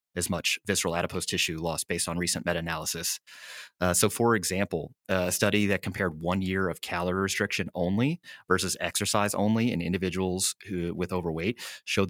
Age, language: 30-49, English